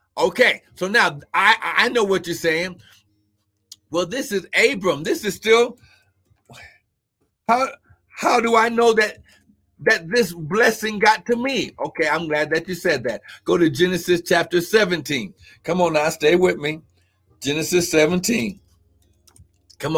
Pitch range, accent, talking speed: 105-175 Hz, American, 145 wpm